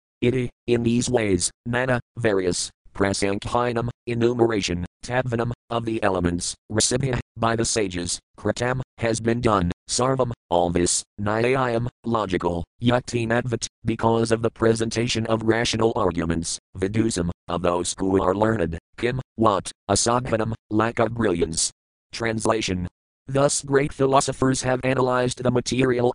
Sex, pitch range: male, 95-120 Hz